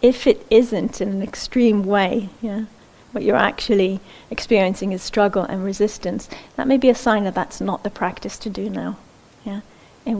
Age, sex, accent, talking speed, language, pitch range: 40-59, female, British, 180 wpm, English, 190-215 Hz